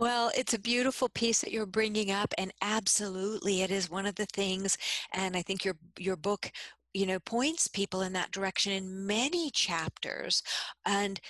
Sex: female